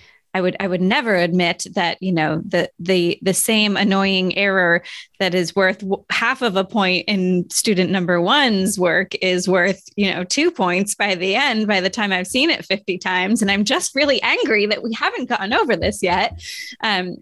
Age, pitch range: 20-39, 185-225 Hz